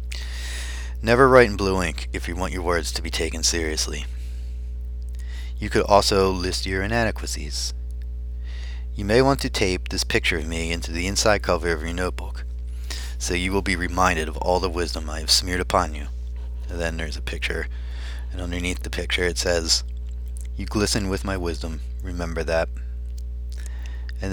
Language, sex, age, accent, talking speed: English, male, 30-49, American, 170 wpm